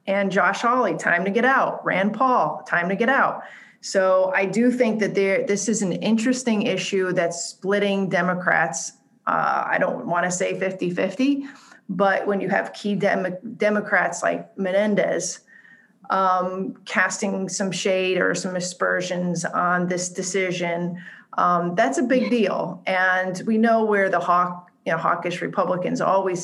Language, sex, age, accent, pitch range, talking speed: English, female, 40-59, American, 180-210 Hz, 155 wpm